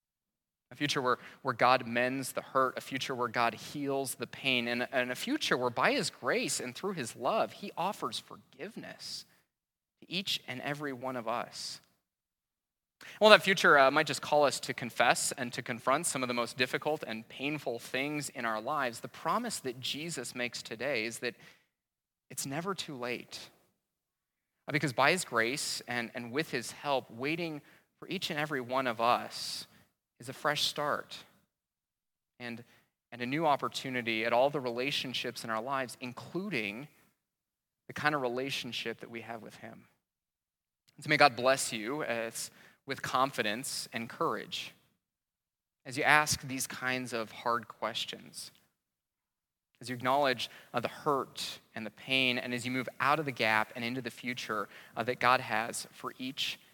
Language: English